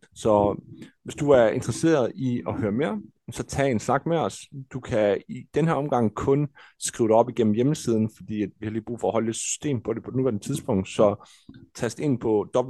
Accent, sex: native, male